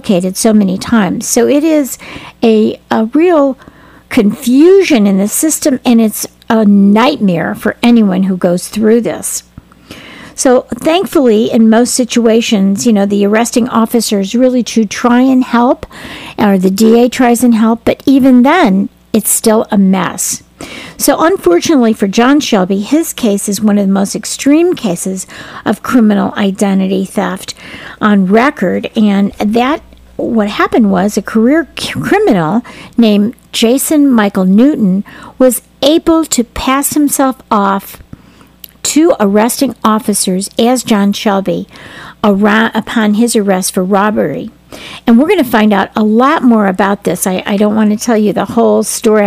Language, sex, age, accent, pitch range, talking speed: English, female, 50-69, American, 205-250 Hz, 150 wpm